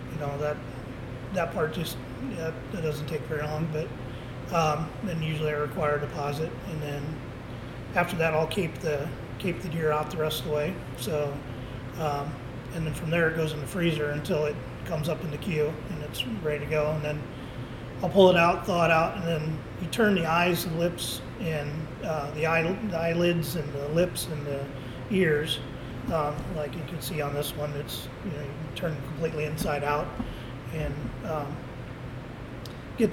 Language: English